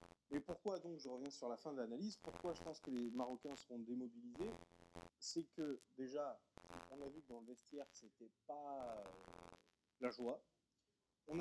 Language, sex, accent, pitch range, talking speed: French, male, French, 130-195 Hz, 175 wpm